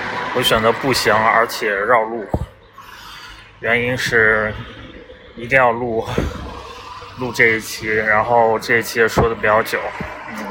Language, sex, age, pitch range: Chinese, male, 20-39, 110-130 Hz